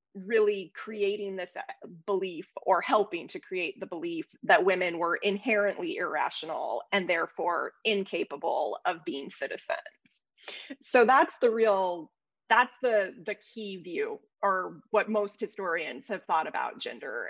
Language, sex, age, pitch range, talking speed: English, female, 20-39, 190-250 Hz, 130 wpm